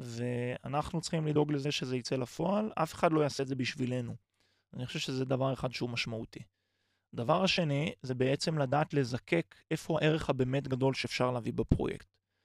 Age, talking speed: 20-39, 165 wpm